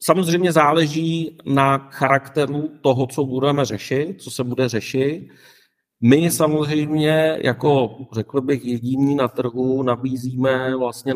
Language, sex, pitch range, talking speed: Czech, male, 115-135 Hz, 120 wpm